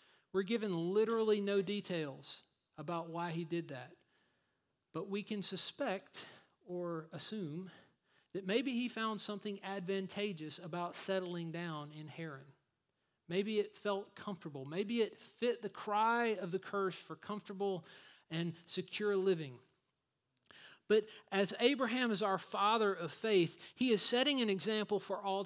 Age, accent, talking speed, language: 40-59, American, 140 wpm, English